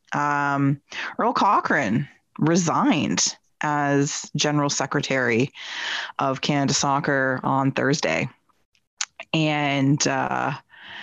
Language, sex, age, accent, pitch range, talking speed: English, female, 30-49, American, 145-185 Hz, 75 wpm